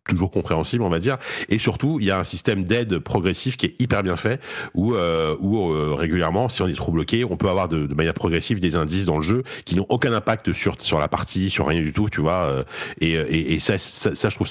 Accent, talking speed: French, 260 wpm